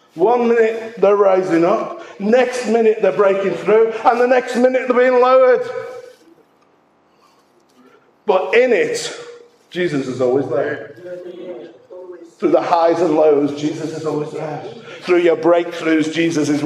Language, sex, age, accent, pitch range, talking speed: English, male, 50-69, British, 160-240 Hz, 135 wpm